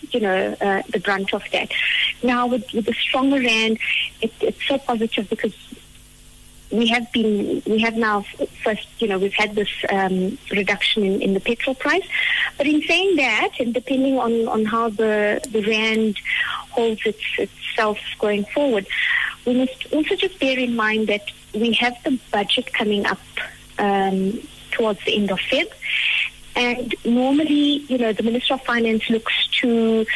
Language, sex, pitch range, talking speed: English, female, 215-255 Hz, 165 wpm